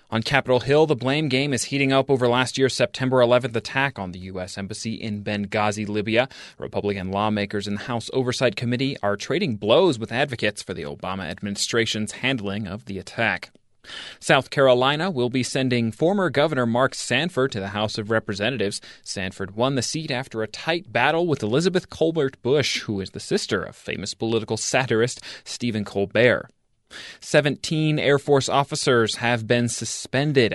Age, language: 30-49, English